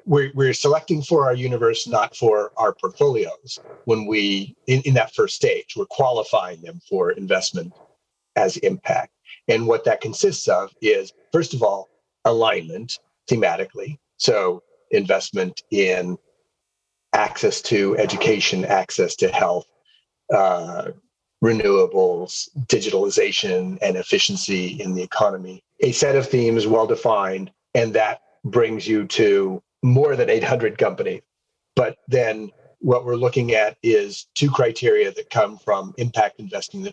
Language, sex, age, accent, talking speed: English, male, 40-59, American, 135 wpm